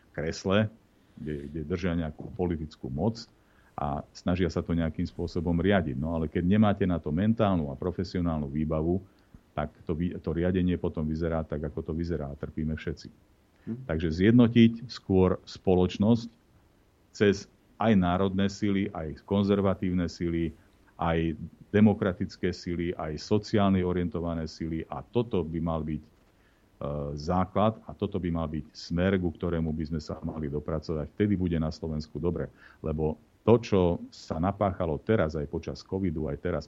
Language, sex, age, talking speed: Slovak, male, 40-59, 145 wpm